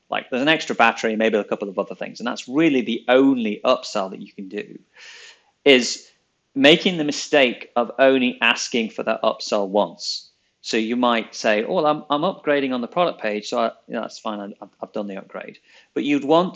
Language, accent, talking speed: English, British, 215 wpm